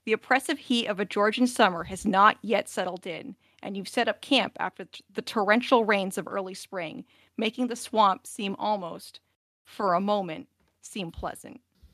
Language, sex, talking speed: English, female, 170 wpm